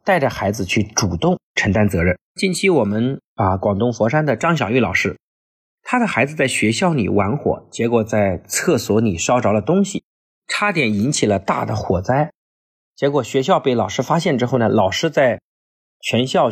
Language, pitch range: Chinese, 100-130 Hz